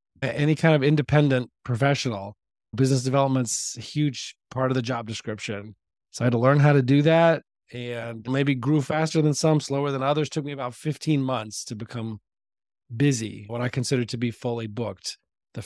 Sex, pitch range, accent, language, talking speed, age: male, 115-150 Hz, American, English, 185 wpm, 30-49